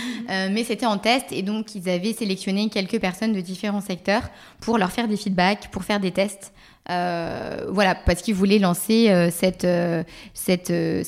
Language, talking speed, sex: French, 190 wpm, female